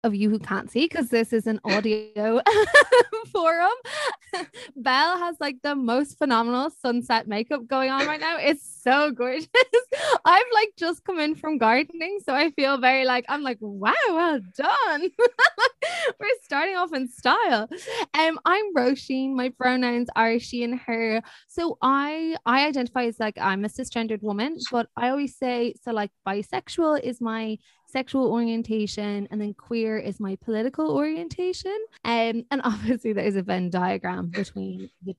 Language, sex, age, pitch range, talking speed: English, female, 20-39, 210-300 Hz, 160 wpm